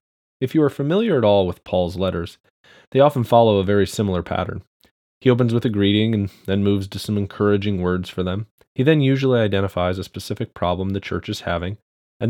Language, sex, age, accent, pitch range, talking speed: English, male, 20-39, American, 95-125 Hz, 205 wpm